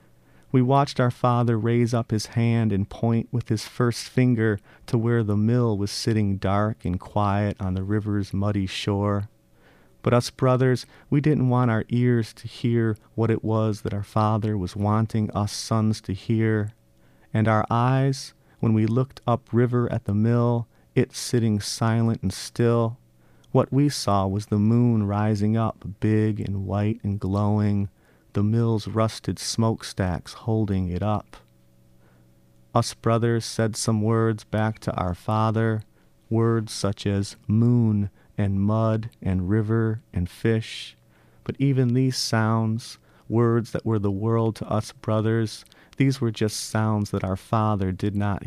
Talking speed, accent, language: 155 wpm, American, English